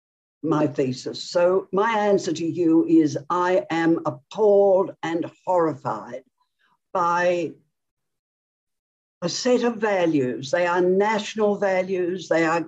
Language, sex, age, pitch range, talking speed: English, female, 60-79, 160-200 Hz, 115 wpm